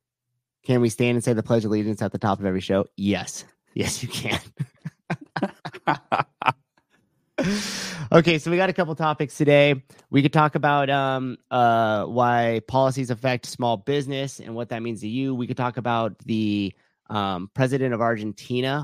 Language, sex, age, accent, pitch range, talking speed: English, male, 30-49, American, 115-140 Hz, 170 wpm